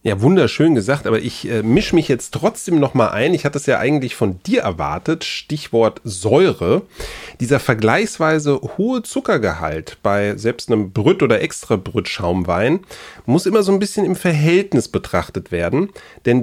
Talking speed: 160 wpm